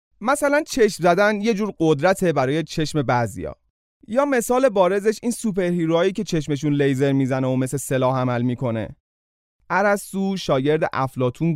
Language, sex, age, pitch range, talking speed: Persian, male, 30-49, 130-205 Hz, 135 wpm